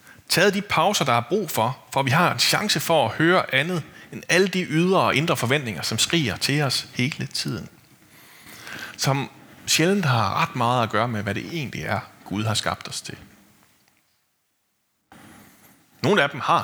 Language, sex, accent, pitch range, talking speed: Danish, male, native, 110-165 Hz, 180 wpm